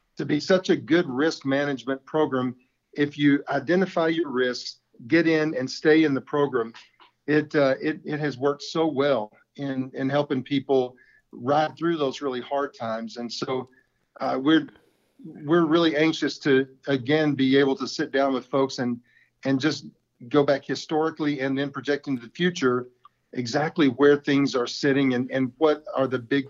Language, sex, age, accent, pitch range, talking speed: English, male, 50-69, American, 130-150 Hz, 175 wpm